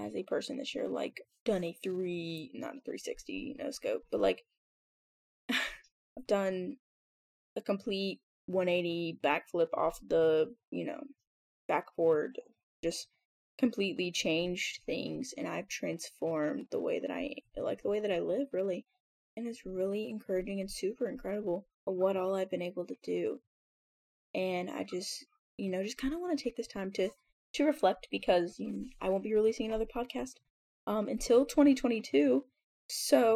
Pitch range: 185-260 Hz